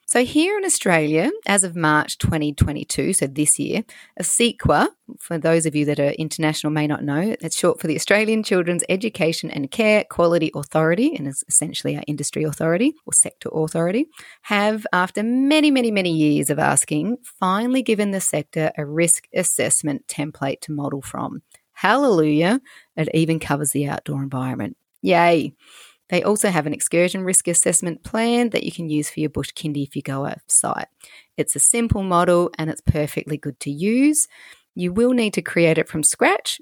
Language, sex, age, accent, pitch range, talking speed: English, female, 30-49, Australian, 150-200 Hz, 180 wpm